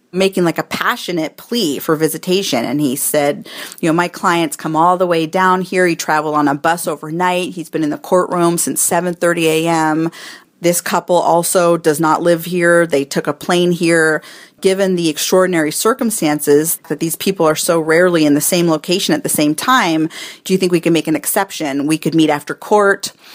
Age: 40-59